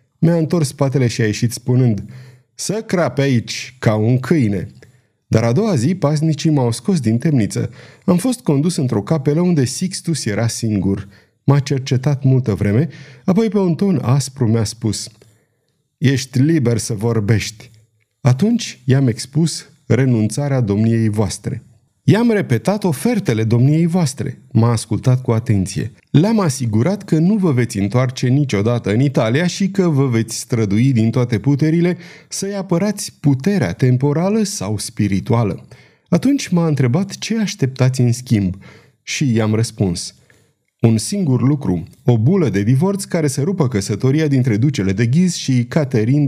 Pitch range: 115-160 Hz